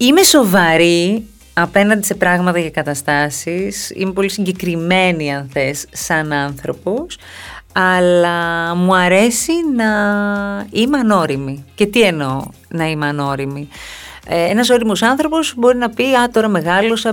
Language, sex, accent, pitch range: Greek, female, native, 150-235 Hz